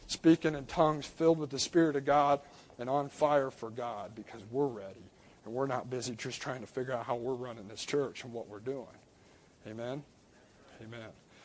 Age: 50-69